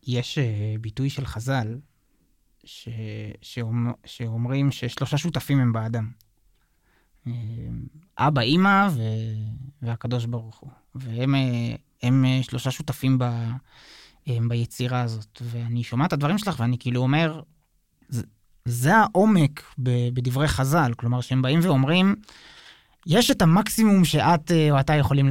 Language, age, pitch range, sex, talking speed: Hebrew, 20-39, 125-155 Hz, male, 115 wpm